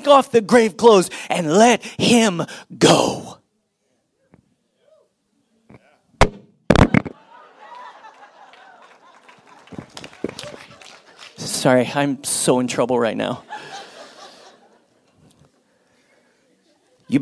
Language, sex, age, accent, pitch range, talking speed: English, male, 30-49, American, 205-275 Hz, 55 wpm